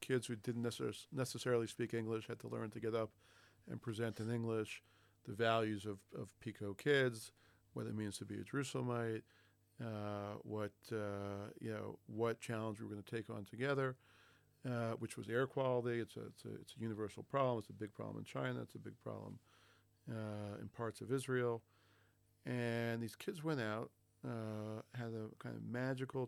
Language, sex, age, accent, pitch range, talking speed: English, male, 50-69, American, 105-115 Hz, 185 wpm